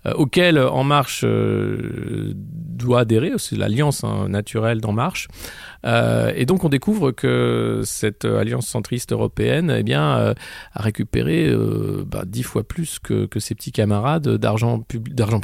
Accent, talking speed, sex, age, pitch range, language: French, 135 wpm, male, 40-59, 110-140 Hz, French